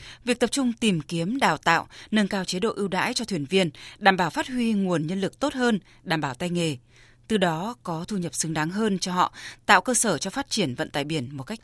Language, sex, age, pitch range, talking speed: Vietnamese, female, 20-39, 155-210 Hz, 260 wpm